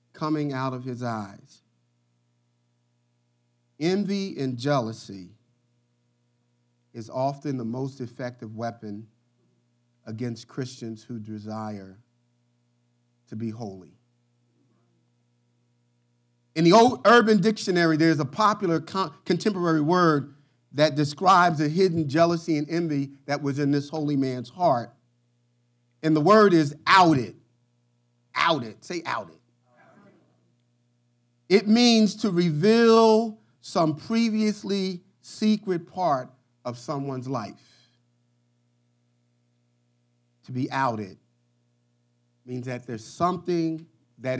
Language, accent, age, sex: English, American, 40-59, male